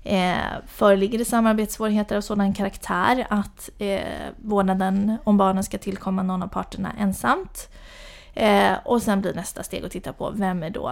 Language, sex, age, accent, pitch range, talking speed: English, female, 30-49, Swedish, 190-220 Hz, 165 wpm